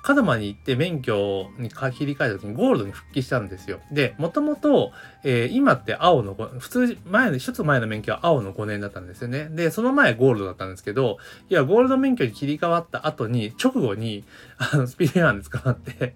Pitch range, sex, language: 100-155 Hz, male, Japanese